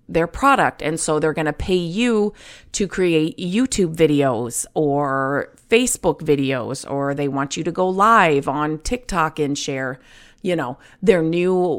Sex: female